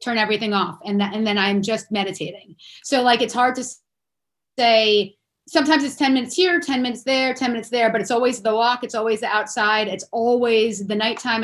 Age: 30-49